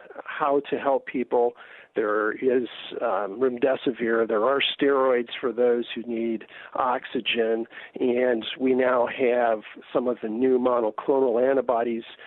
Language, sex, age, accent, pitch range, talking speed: English, male, 50-69, American, 120-150 Hz, 125 wpm